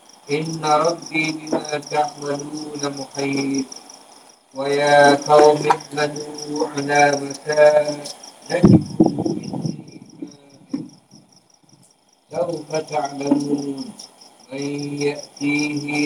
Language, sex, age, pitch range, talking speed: Malay, male, 50-69, 145-155 Hz, 50 wpm